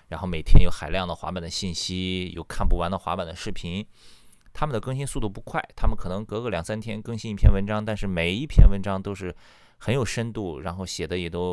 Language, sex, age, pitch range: Chinese, male, 20-39, 85-115 Hz